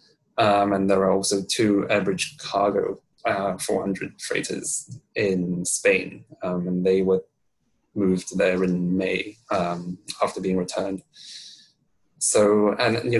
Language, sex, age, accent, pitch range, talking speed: English, male, 20-39, British, 95-105 Hz, 130 wpm